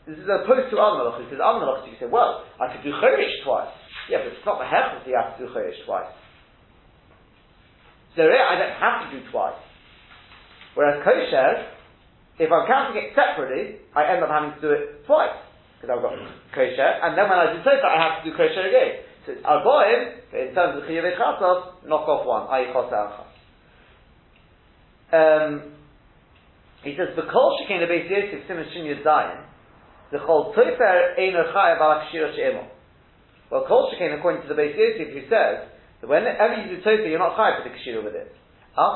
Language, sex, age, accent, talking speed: English, male, 40-59, British, 195 wpm